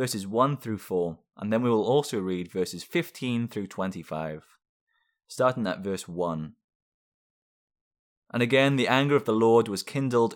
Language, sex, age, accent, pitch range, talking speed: English, male, 20-39, British, 100-130 Hz, 155 wpm